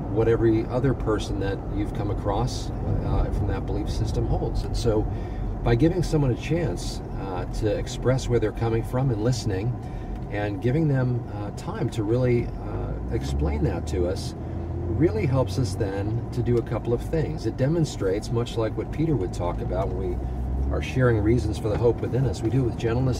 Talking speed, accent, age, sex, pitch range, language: 195 wpm, American, 40-59, male, 95-120 Hz, English